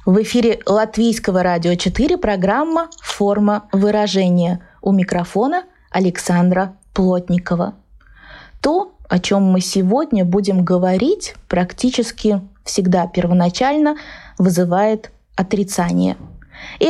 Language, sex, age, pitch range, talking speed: Russian, female, 20-39, 185-235 Hz, 95 wpm